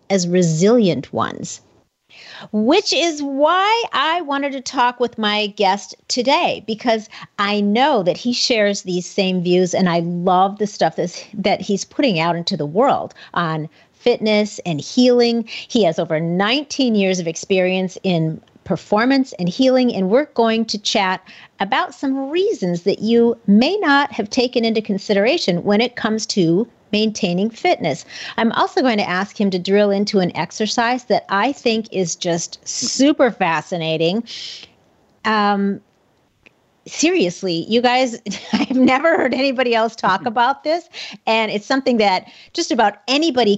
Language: English